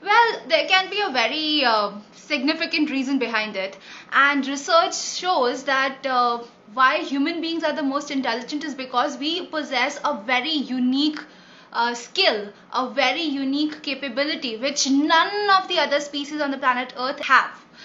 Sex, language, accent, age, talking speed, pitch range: female, Hindi, native, 20-39, 160 wpm, 250-305 Hz